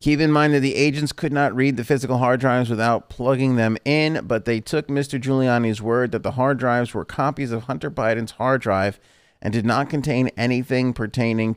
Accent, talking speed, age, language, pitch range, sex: American, 205 wpm, 30-49, English, 110-135 Hz, male